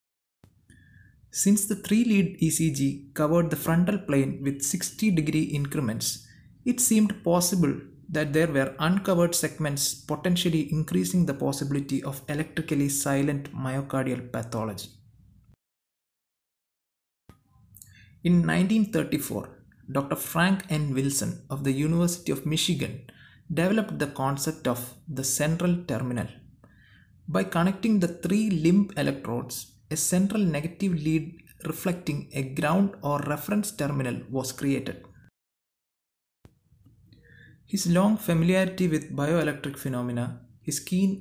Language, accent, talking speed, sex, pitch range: Malayalam, native, 105 wpm, male, 125-175 Hz